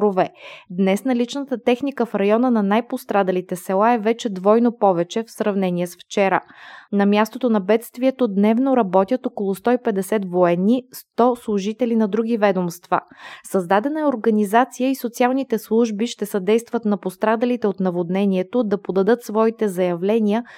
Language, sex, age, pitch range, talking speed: Bulgarian, female, 20-39, 195-235 Hz, 135 wpm